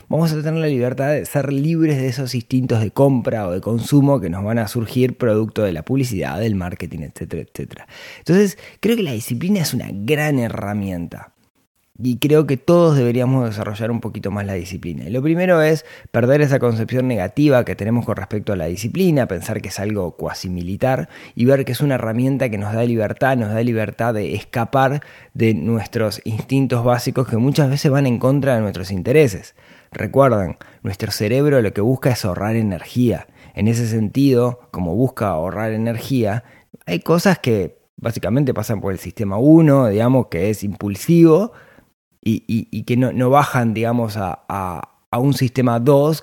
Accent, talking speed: Argentinian, 185 wpm